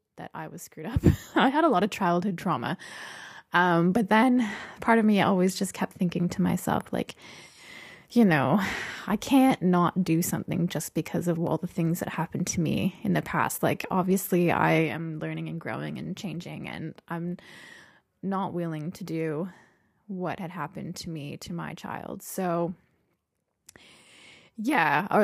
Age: 20-39